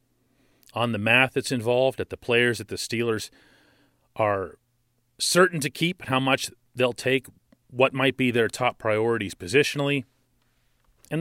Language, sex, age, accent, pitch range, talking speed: English, male, 40-59, American, 115-135 Hz, 150 wpm